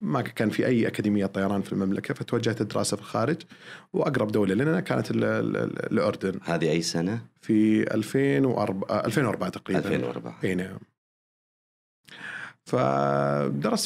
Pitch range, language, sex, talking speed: 100-130 Hz, Arabic, male, 120 wpm